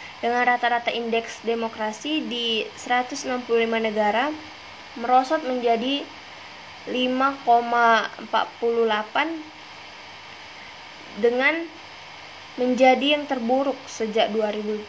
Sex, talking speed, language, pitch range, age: female, 60 wpm, Indonesian, 225-265 Hz, 20-39